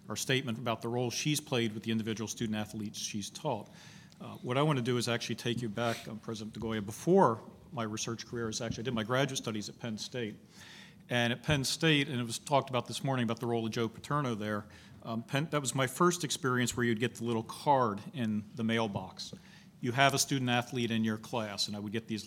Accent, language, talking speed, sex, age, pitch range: American, English, 230 wpm, male, 40-59, 110-125 Hz